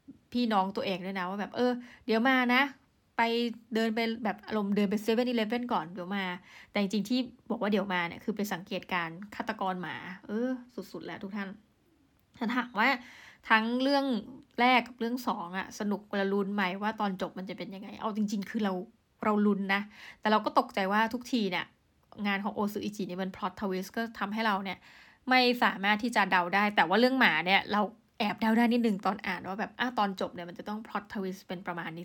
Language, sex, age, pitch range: Thai, female, 20-39, 195-230 Hz